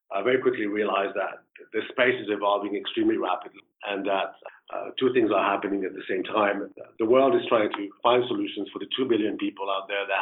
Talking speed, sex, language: 215 wpm, male, English